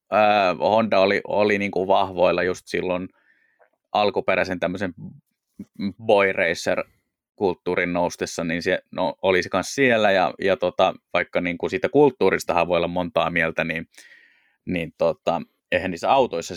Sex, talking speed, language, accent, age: male, 140 wpm, Finnish, native, 20-39